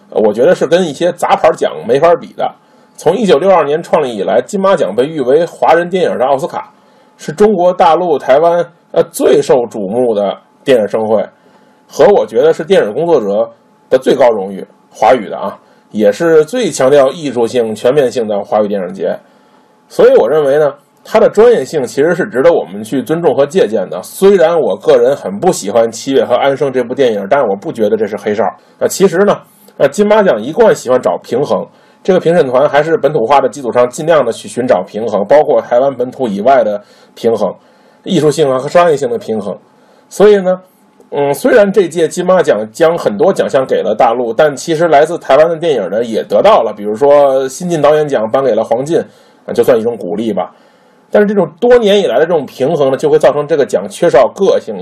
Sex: male